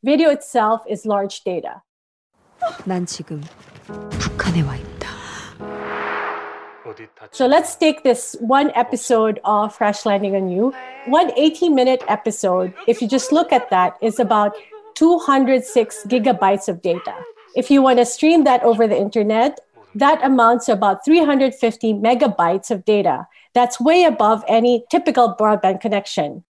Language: English